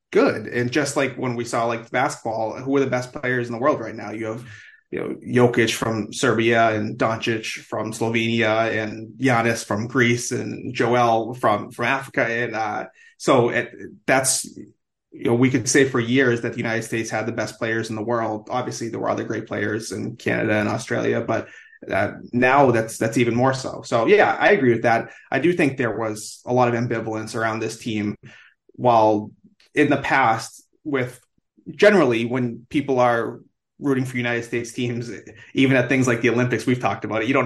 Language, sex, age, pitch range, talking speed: English, male, 20-39, 110-125 Hz, 195 wpm